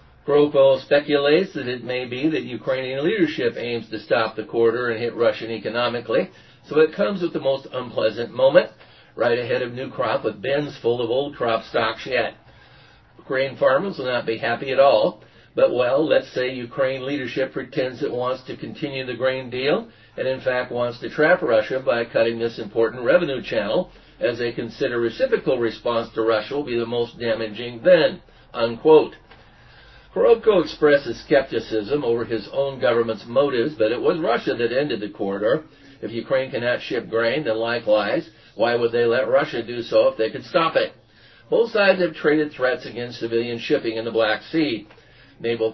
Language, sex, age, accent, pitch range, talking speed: English, male, 50-69, American, 115-145 Hz, 180 wpm